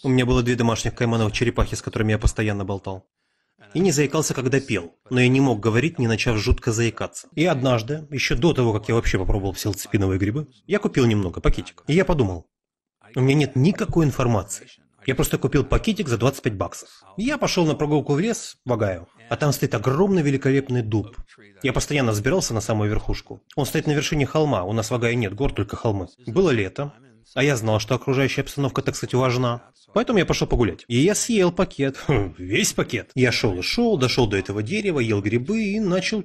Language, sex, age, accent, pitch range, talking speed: Russian, male, 30-49, native, 115-150 Hz, 205 wpm